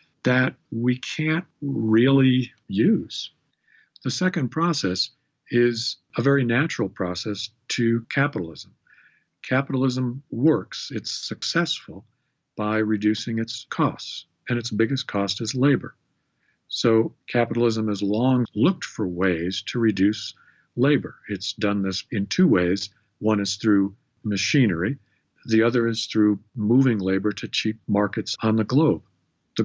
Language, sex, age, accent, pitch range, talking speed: English, male, 50-69, American, 105-130 Hz, 125 wpm